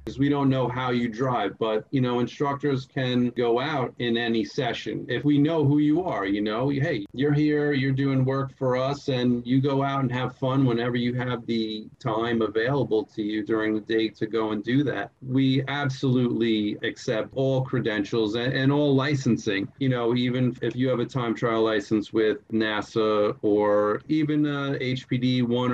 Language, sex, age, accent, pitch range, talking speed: English, male, 40-59, American, 115-135 Hz, 190 wpm